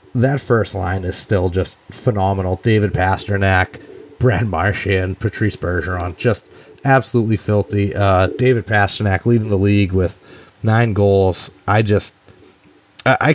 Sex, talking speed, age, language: male, 125 wpm, 30-49, English